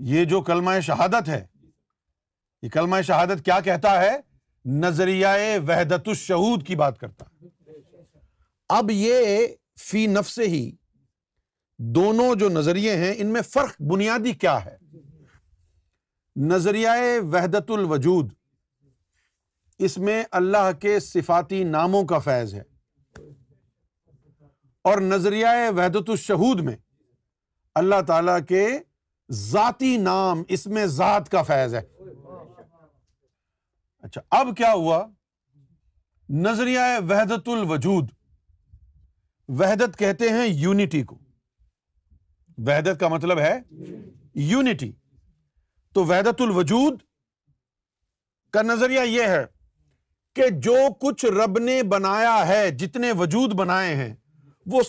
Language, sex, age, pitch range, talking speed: Urdu, male, 50-69, 135-210 Hz, 105 wpm